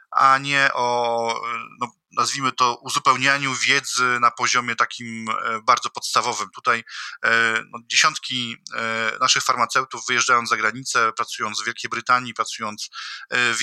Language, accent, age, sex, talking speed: Polish, native, 20-39, male, 120 wpm